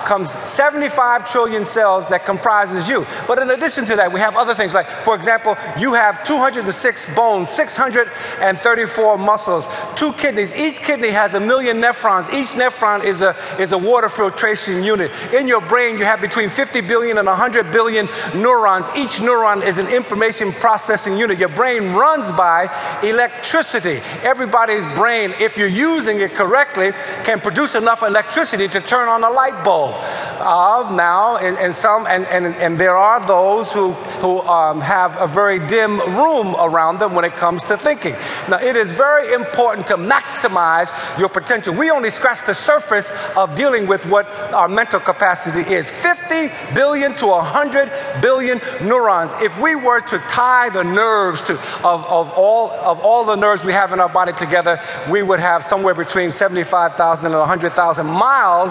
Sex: male